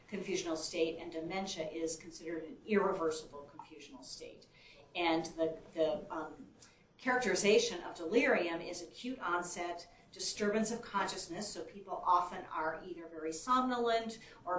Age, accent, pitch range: 40-59, American, 165-200 Hz